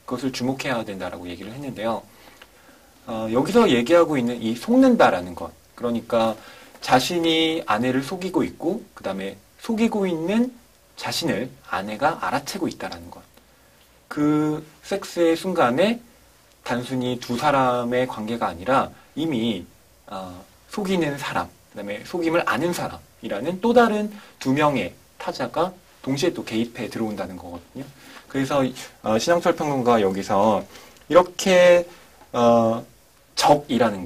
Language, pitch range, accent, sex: Korean, 115-180 Hz, native, male